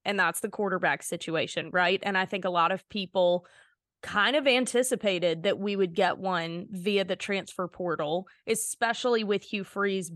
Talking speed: 170 wpm